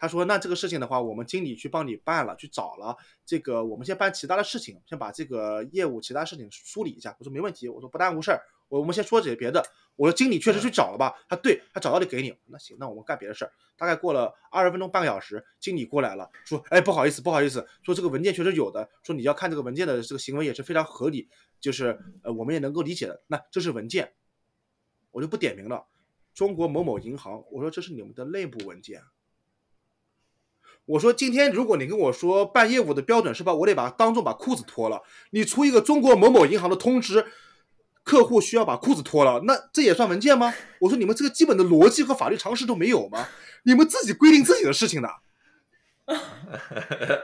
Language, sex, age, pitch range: Chinese, male, 20-39, 155-245 Hz